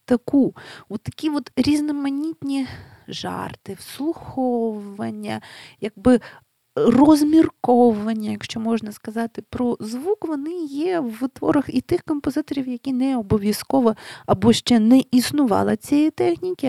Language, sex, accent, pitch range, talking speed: Ukrainian, female, native, 180-255 Hz, 95 wpm